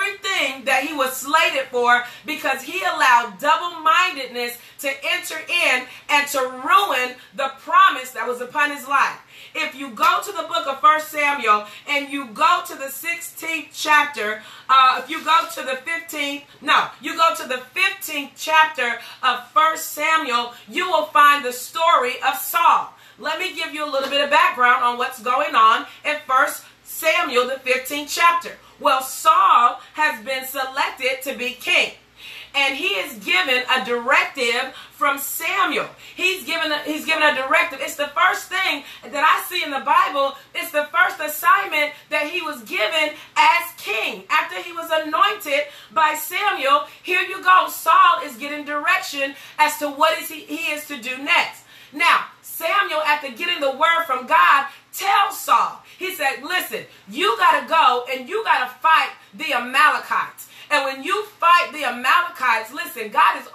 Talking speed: 165 wpm